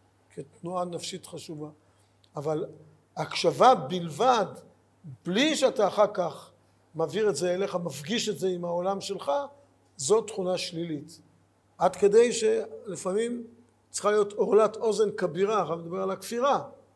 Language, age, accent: Hebrew, 50-69, native